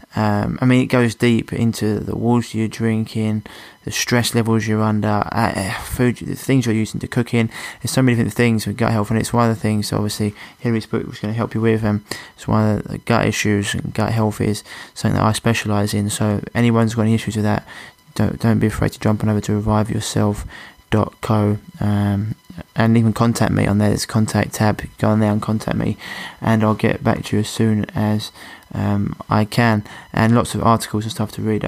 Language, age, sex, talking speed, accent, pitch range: English, 20-39, male, 230 wpm, British, 105-115 Hz